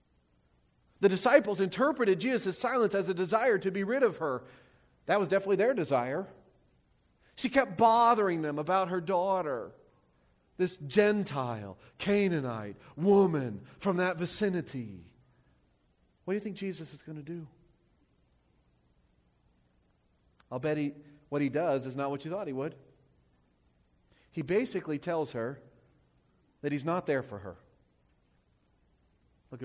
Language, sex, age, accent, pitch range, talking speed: English, male, 40-59, American, 120-195 Hz, 130 wpm